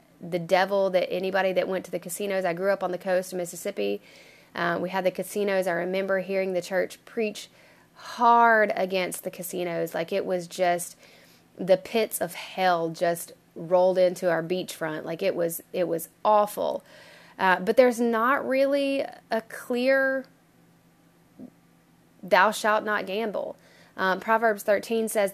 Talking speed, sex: 155 wpm, female